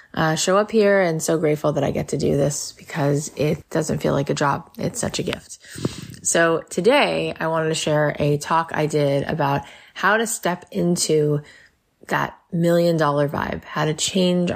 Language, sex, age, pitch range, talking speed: English, female, 20-39, 150-185 Hz, 190 wpm